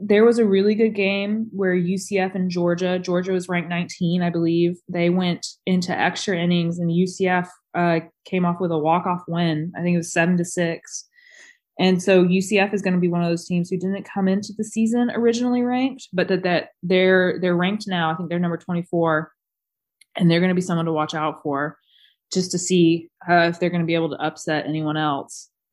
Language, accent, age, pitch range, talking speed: English, American, 20-39, 155-185 Hz, 215 wpm